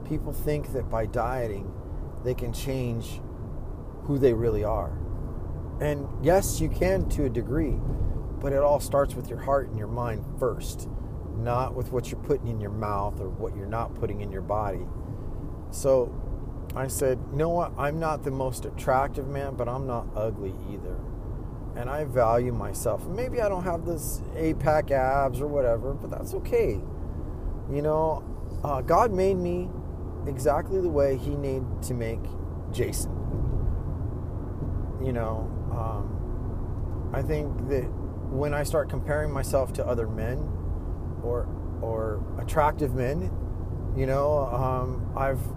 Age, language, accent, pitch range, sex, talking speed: 40-59, English, American, 95-130 Hz, male, 150 wpm